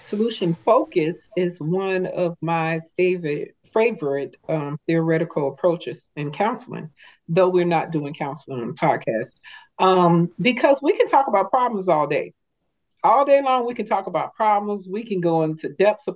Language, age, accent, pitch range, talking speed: English, 40-59, American, 160-210 Hz, 165 wpm